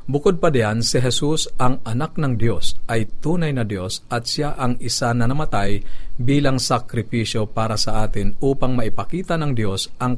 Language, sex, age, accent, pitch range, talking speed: Filipino, male, 50-69, native, 105-130 Hz, 170 wpm